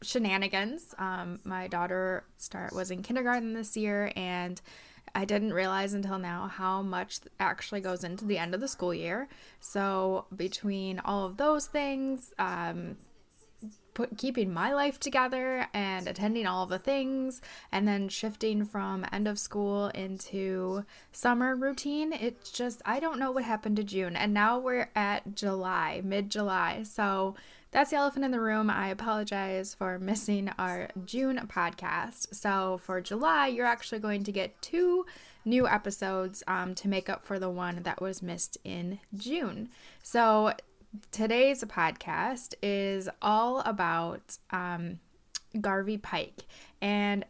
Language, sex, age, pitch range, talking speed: English, female, 10-29, 190-230 Hz, 145 wpm